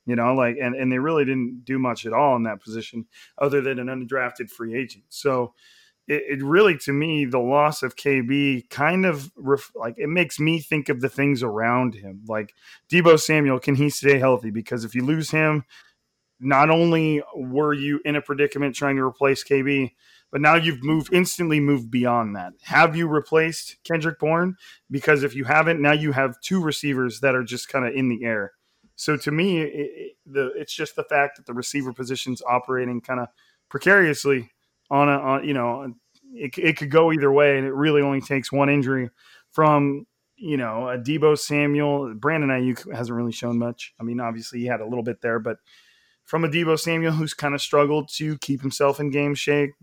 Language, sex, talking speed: English, male, 200 wpm